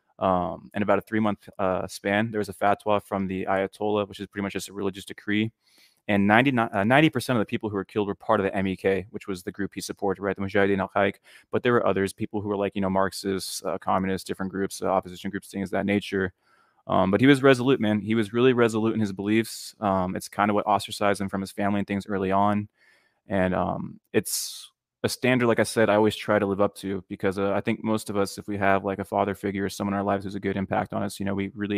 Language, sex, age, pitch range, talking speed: English, male, 20-39, 95-105 Hz, 270 wpm